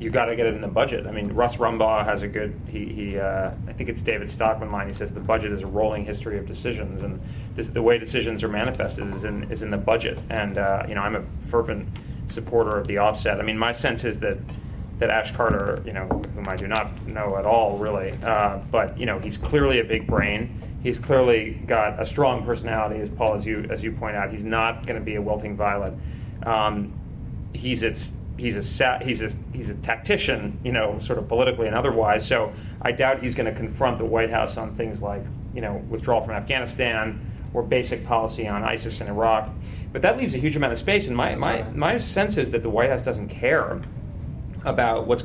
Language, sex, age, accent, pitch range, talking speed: English, male, 30-49, American, 105-115 Hz, 230 wpm